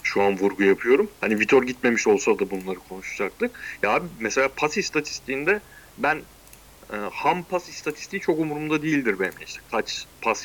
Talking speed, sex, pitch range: 160 wpm, male, 120-175 Hz